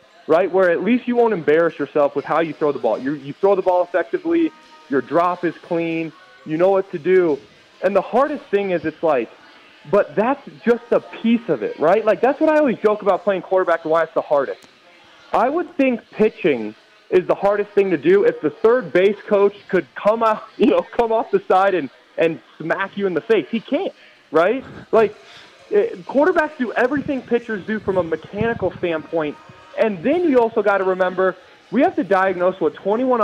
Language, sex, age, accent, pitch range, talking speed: English, male, 20-39, American, 175-235 Hz, 210 wpm